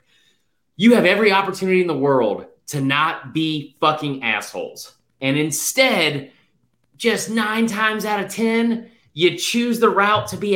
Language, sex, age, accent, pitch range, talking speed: English, male, 30-49, American, 180-275 Hz, 150 wpm